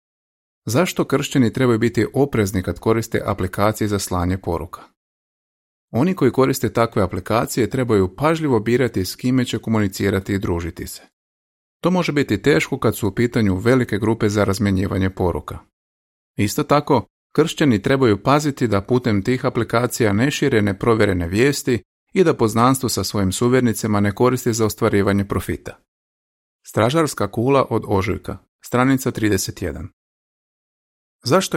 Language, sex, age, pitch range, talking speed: Croatian, male, 30-49, 100-130 Hz, 130 wpm